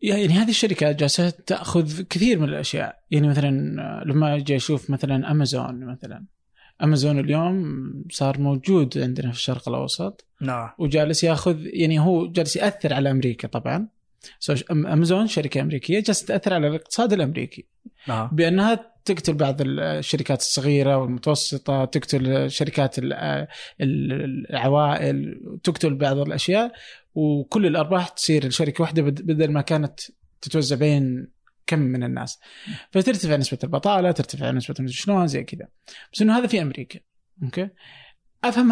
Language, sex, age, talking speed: Arabic, male, 20-39, 120 wpm